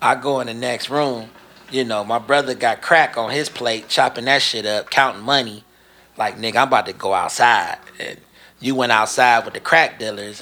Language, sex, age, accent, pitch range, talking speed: English, male, 30-49, American, 120-165 Hz, 205 wpm